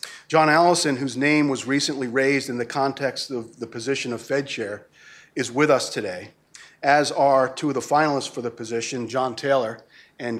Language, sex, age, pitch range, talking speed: English, male, 40-59, 125-150 Hz, 185 wpm